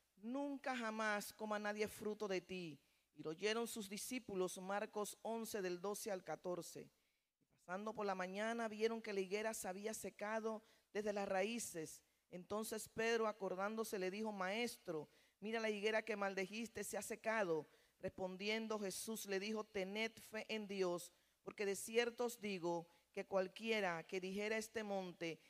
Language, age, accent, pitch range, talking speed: Spanish, 40-59, American, 185-225 Hz, 155 wpm